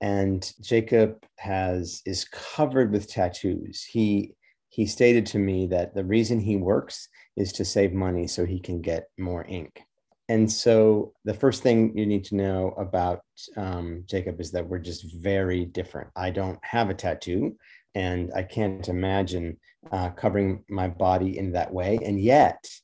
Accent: American